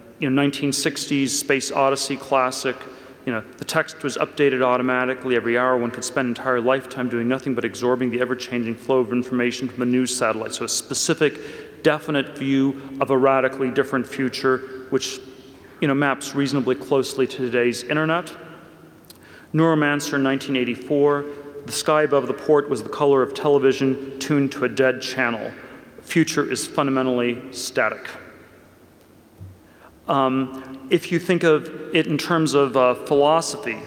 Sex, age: male, 40-59